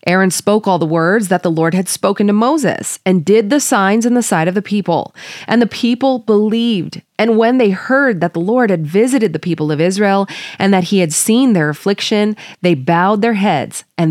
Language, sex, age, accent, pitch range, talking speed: English, female, 20-39, American, 165-215 Hz, 215 wpm